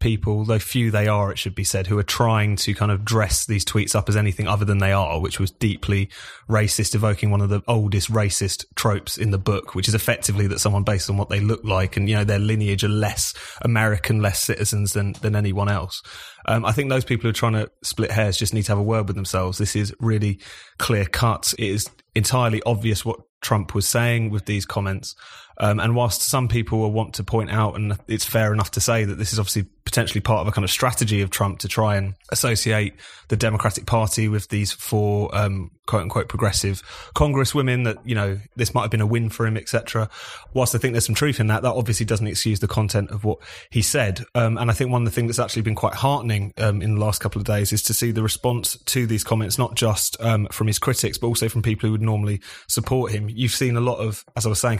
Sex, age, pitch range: male, 20-39, 105-115 Hz